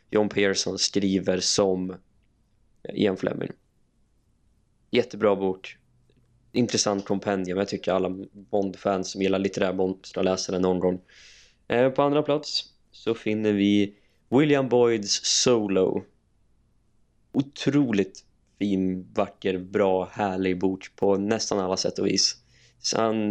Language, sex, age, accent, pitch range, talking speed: Swedish, male, 20-39, native, 95-110 Hz, 115 wpm